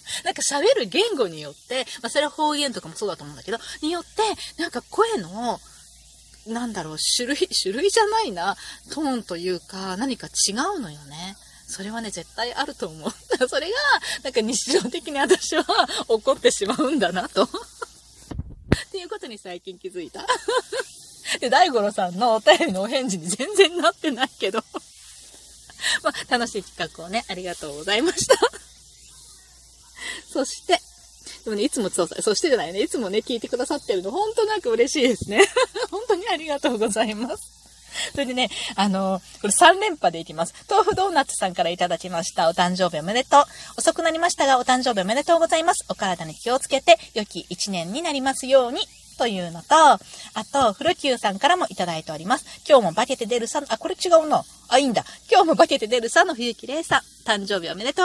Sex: female